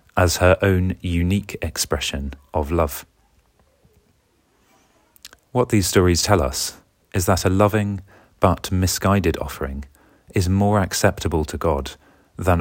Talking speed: 120 wpm